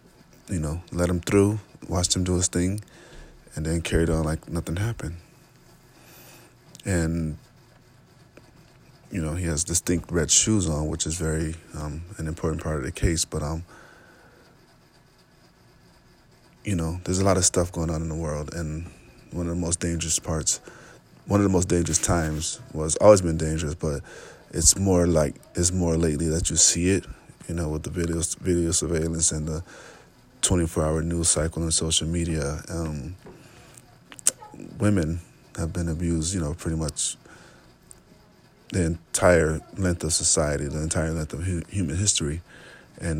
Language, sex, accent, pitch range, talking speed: English, male, American, 80-90 Hz, 160 wpm